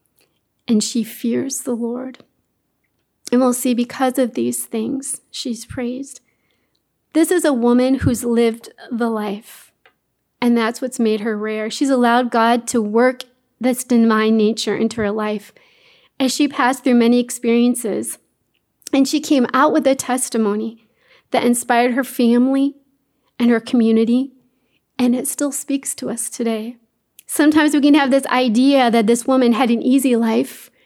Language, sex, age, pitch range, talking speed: English, female, 40-59, 230-275 Hz, 155 wpm